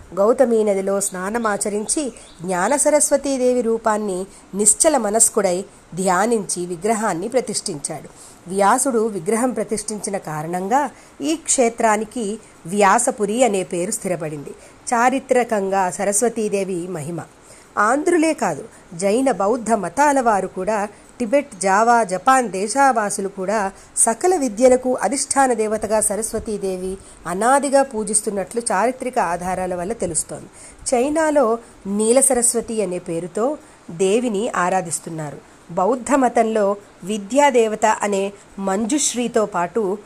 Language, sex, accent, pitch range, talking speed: Telugu, female, native, 190-250 Hz, 90 wpm